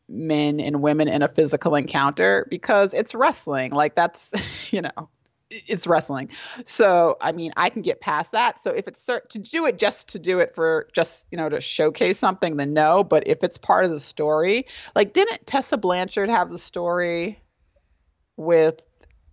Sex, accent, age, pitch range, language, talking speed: female, American, 30-49, 150-210 Hz, English, 185 wpm